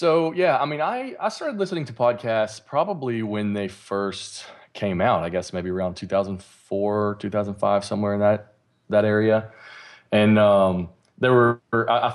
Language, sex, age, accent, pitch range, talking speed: English, male, 20-39, American, 90-115 Hz, 180 wpm